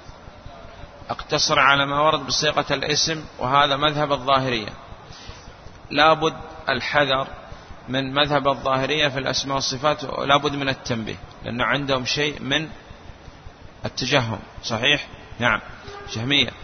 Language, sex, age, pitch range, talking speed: Arabic, male, 30-49, 120-150 Hz, 100 wpm